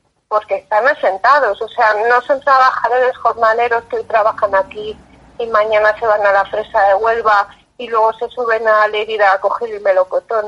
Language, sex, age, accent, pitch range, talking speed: Spanish, female, 30-49, Spanish, 210-255 Hz, 185 wpm